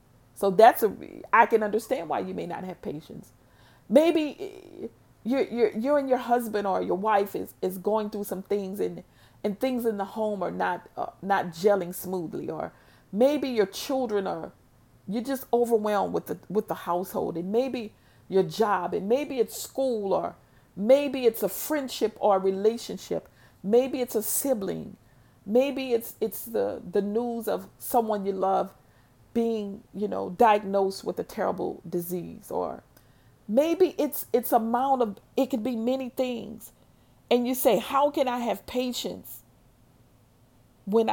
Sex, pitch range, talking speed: female, 180-245 Hz, 160 wpm